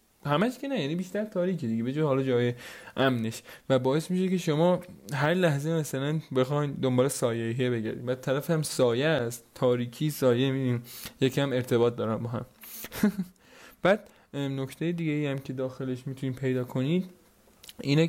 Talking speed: 165 wpm